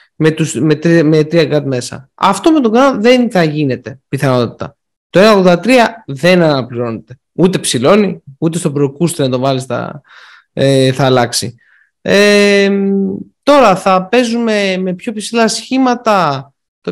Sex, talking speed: male, 140 wpm